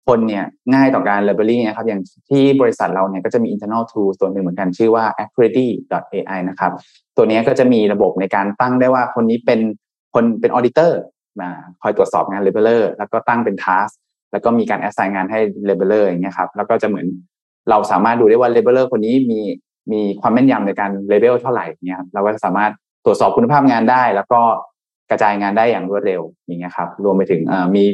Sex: male